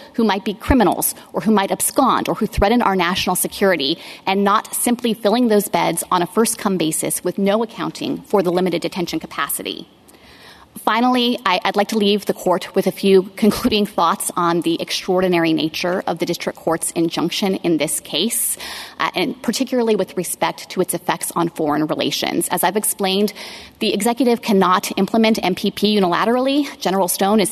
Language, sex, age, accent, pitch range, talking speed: English, female, 30-49, American, 180-220 Hz, 170 wpm